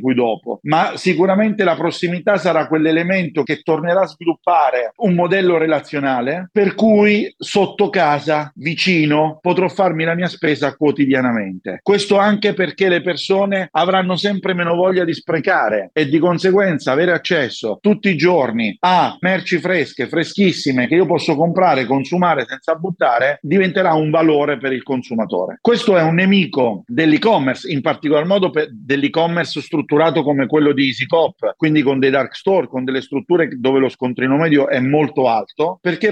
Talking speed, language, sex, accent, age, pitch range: 155 wpm, Italian, male, native, 50-69, 145-185 Hz